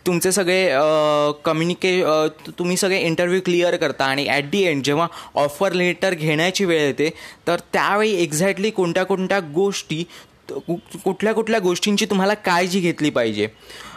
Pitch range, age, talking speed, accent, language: 155-190 Hz, 20-39, 140 wpm, native, Marathi